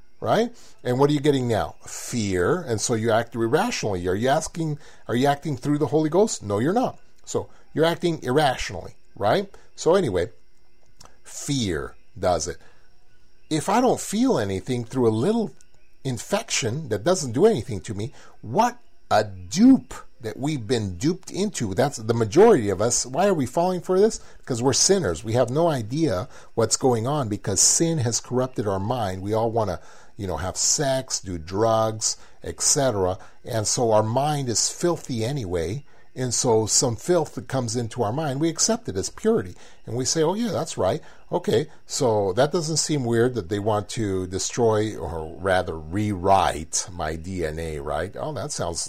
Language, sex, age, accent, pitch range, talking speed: English, male, 40-59, American, 105-150 Hz, 180 wpm